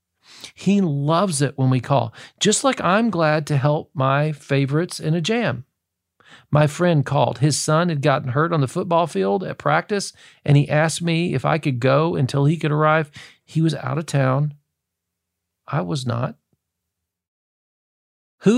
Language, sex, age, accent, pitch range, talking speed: English, male, 40-59, American, 130-185 Hz, 170 wpm